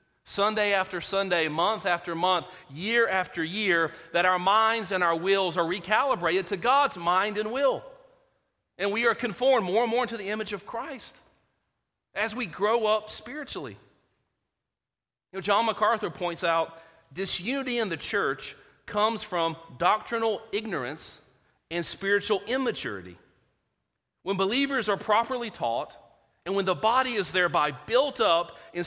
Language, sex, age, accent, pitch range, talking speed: English, male, 40-59, American, 155-220 Hz, 140 wpm